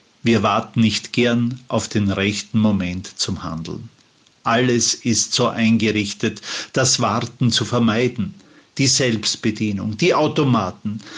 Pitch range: 110-150 Hz